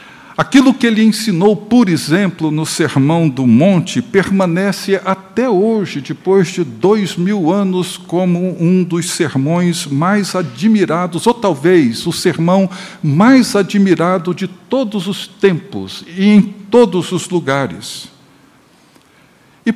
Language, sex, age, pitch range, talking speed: Portuguese, male, 60-79, 155-215 Hz, 120 wpm